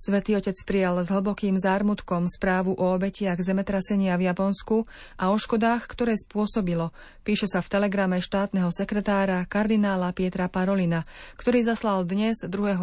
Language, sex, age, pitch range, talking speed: Slovak, female, 30-49, 185-215 Hz, 140 wpm